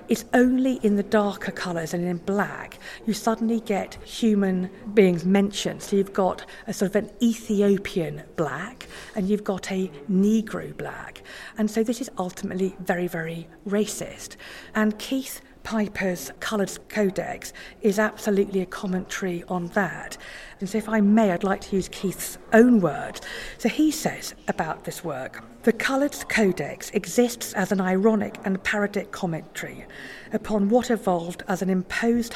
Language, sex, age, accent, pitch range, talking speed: English, female, 50-69, British, 180-220 Hz, 155 wpm